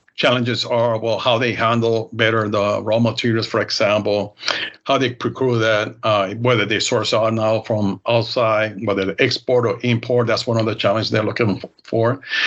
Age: 60-79